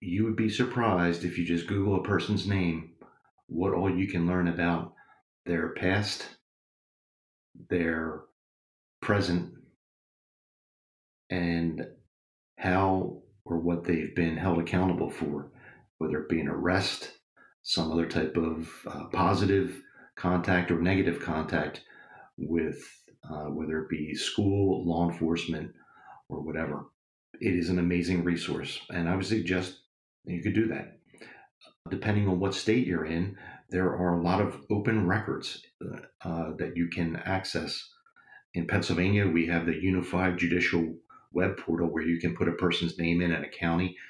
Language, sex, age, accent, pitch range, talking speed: English, male, 40-59, American, 85-95 Hz, 145 wpm